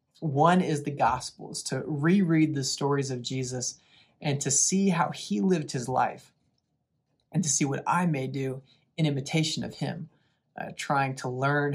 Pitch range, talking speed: 135-155 Hz, 170 wpm